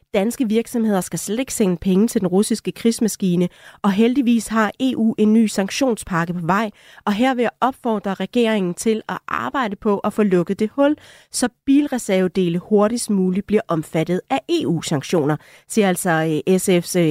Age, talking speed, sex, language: 30-49, 155 wpm, female, Danish